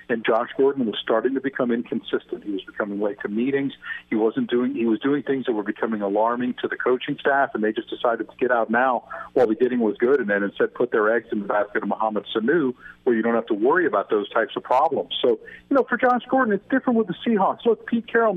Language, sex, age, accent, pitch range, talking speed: English, male, 50-69, American, 125-185 Hz, 260 wpm